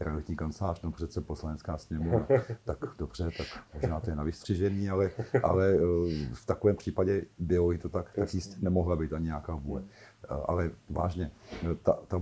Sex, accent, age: male, native, 50-69